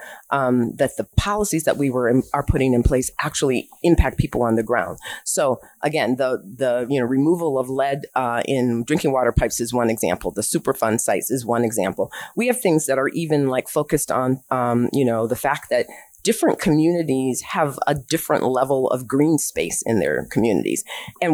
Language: English